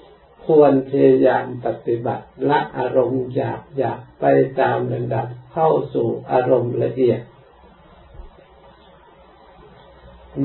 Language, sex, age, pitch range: Thai, male, 60-79, 115-135 Hz